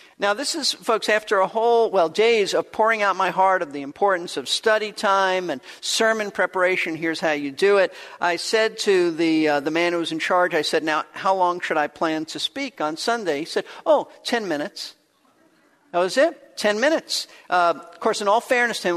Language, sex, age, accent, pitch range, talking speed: English, male, 50-69, American, 170-240 Hz, 220 wpm